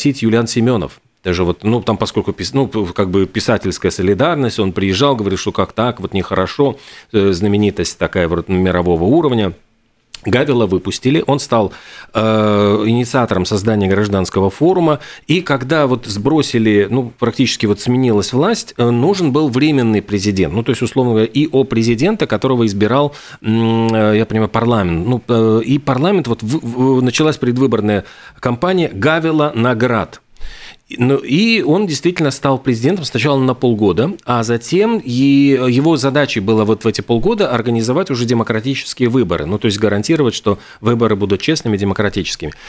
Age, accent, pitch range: 40-59, native, 105-140 Hz